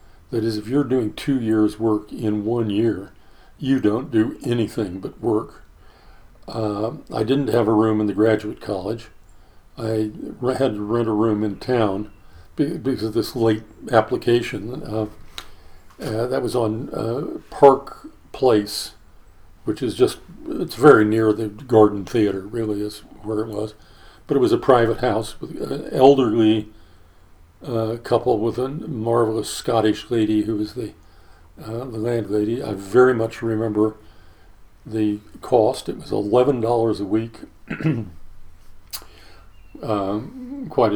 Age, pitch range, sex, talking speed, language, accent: 50-69, 100-115 Hz, male, 145 wpm, English, American